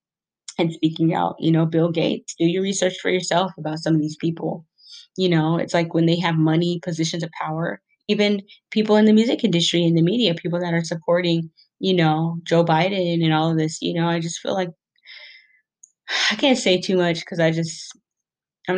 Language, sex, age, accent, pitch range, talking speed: English, female, 20-39, American, 160-185 Hz, 205 wpm